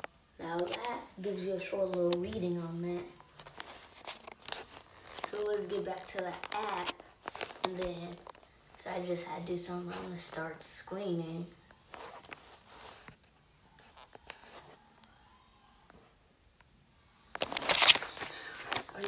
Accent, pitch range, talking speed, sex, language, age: American, 175-205 Hz, 100 wpm, female, English, 20-39